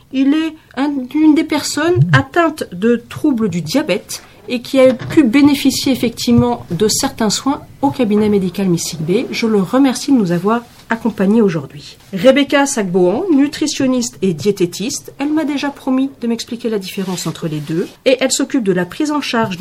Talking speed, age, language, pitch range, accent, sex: 170 wpm, 40-59, French, 180-260 Hz, French, female